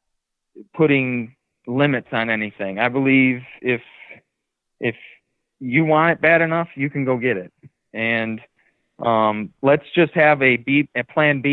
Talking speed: 145 wpm